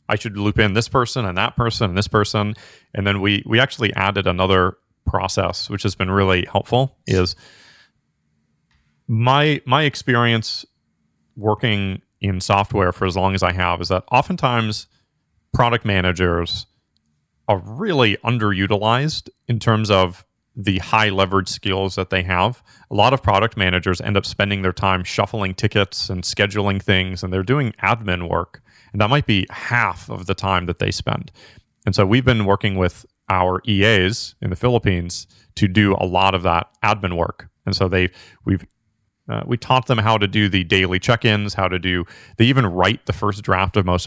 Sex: male